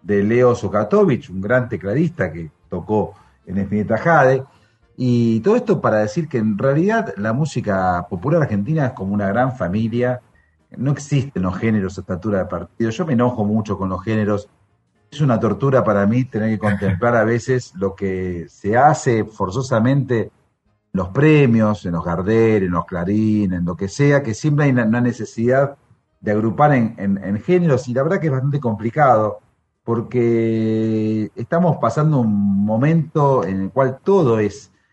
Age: 40-59